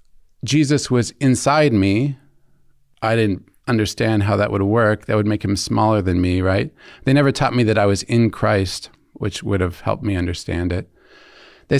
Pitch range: 95-125 Hz